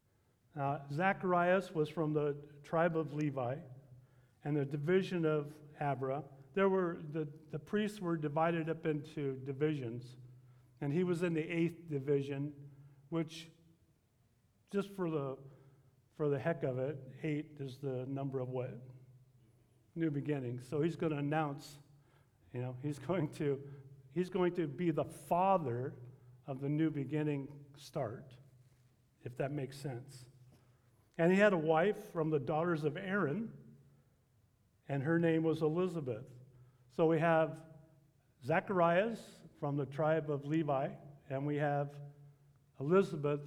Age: 50-69